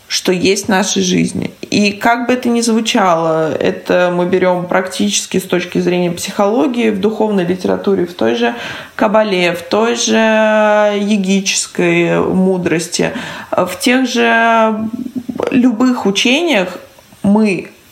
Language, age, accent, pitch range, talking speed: Russian, 20-39, native, 185-230 Hz, 125 wpm